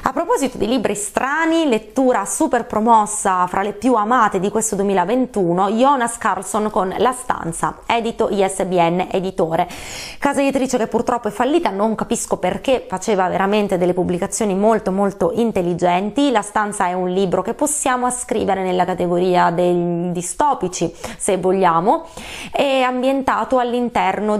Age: 20-39